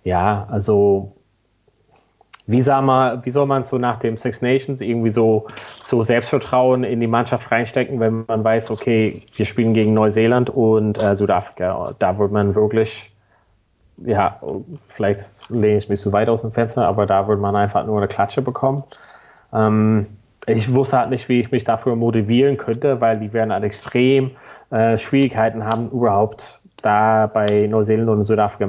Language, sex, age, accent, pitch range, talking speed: German, male, 30-49, German, 105-130 Hz, 165 wpm